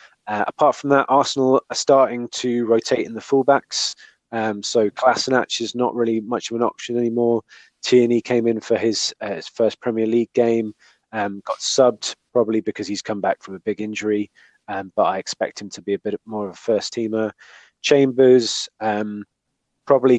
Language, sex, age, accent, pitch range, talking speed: English, male, 20-39, British, 110-130 Hz, 190 wpm